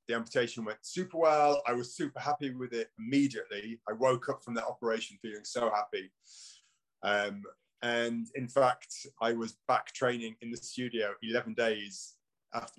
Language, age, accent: English, 30-49, British